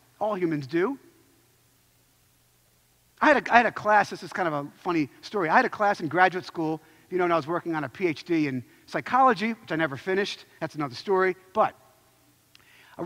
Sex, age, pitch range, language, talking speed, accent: male, 50-69, 160-270 Hz, English, 200 wpm, American